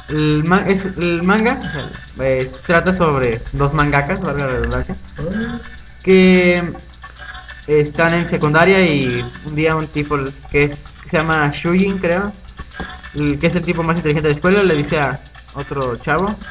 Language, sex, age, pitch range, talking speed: Spanish, male, 20-39, 125-175 Hz, 165 wpm